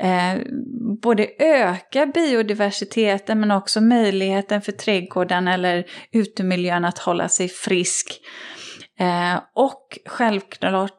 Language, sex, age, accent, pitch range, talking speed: Swedish, female, 30-49, native, 195-240 Hz, 100 wpm